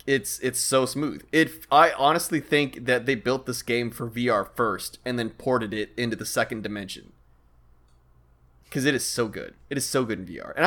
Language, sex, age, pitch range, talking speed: English, male, 20-39, 105-140 Hz, 200 wpm